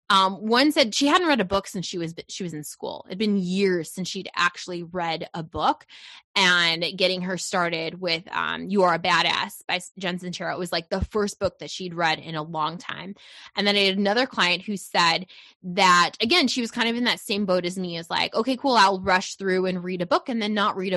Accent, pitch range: American, 185-240 Hz